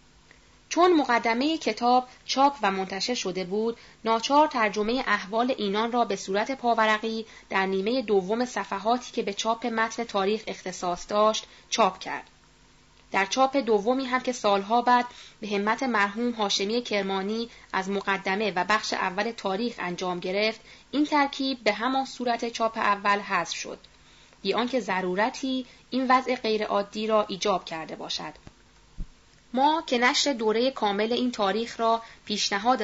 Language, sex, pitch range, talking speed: Persian, female, 200-245 Hz, 140 wpm